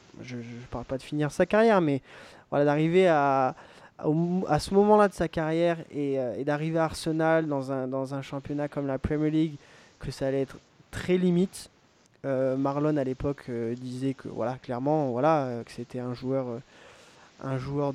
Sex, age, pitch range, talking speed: male, 20-39, 130-155 Hz, 195 wpm